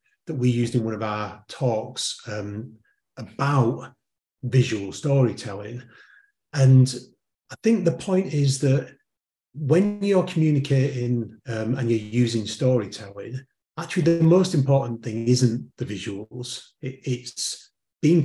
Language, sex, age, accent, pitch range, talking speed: English, male, 30-49, British, 115-140 Hz, 120 wpm